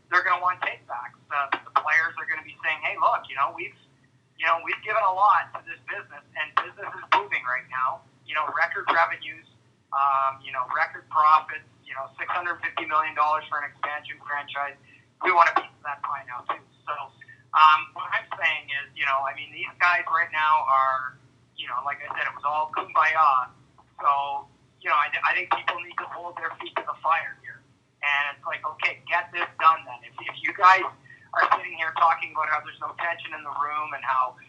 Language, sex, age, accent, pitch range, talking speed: English, male, 30-49, American, 135-165 Hz, 210 wpm